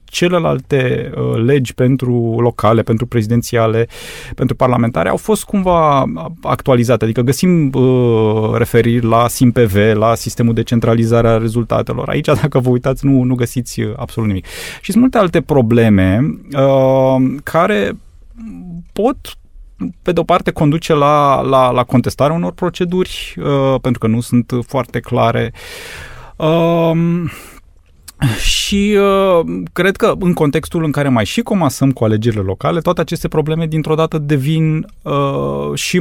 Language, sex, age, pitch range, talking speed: Romanian, male, 30-49, 115-160 Hz, 135 wpm